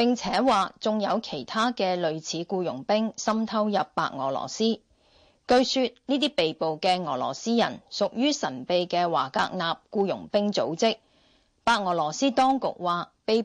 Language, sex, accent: Chinese, female, native